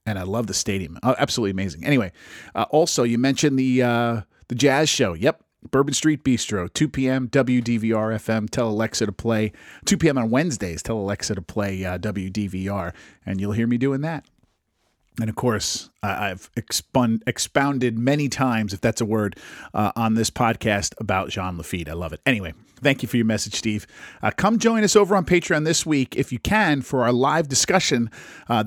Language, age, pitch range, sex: English, 40-59, 110-140 Hz, male